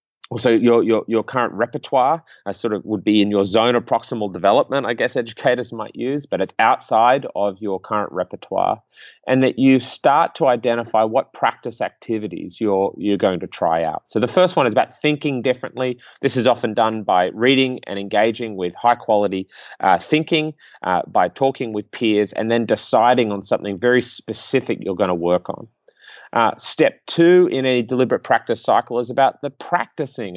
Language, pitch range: English, 105-130 Hz